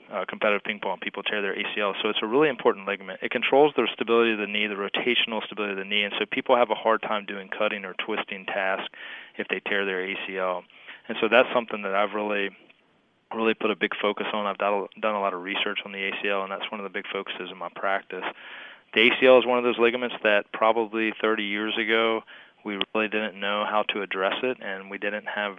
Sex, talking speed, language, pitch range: male, 235 wpm, English, 100-110 Hz